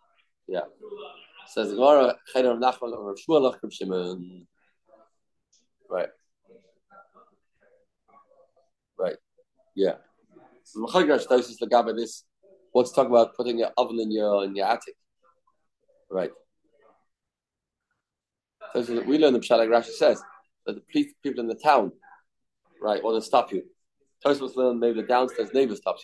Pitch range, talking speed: 125-200 Hz, 100 wpm